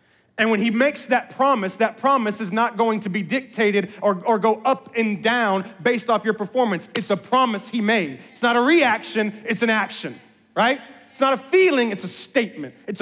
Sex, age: male, 30-49